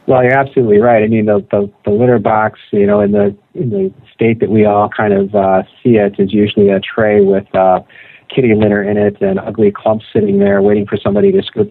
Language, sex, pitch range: English, male, 100-140 Hz